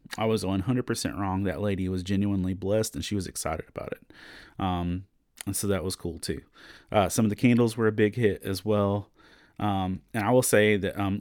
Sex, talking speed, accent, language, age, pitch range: male, 215 wpm, American, English, 30-49, 95-110 Hz